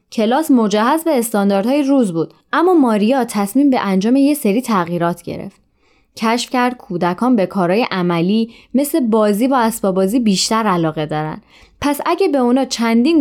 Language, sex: Persian, female